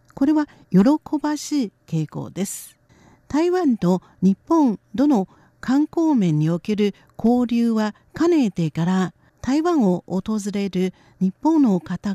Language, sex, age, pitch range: Japanese, female, 50-69, 185-270 Hz